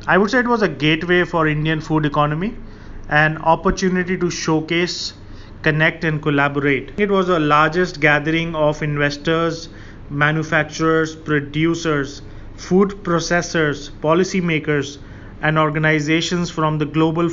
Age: 30-49